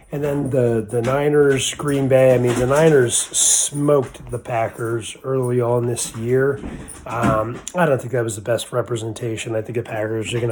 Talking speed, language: 190 wpm, English